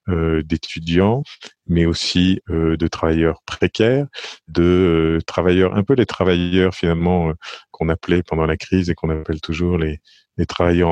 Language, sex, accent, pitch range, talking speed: French, male, French, 85-100 Hz, 160 wpm